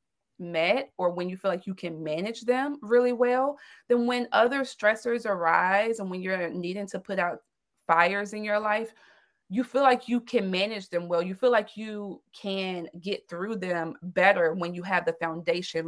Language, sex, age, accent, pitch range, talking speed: English, female, 30-49, American, 170-220 Hz, 190 wpm